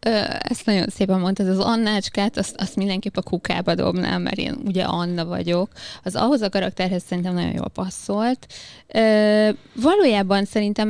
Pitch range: 175-215 Hz